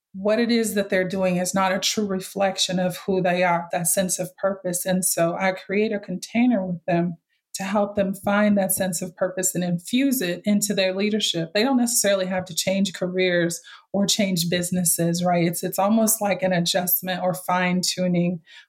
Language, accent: English, American